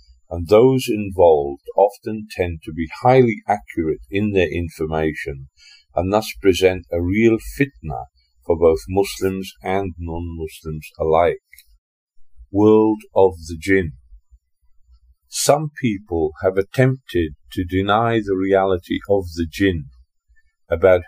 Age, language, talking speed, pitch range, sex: 50-69, Indonesian, 115 wpm, 80-110 Hz, male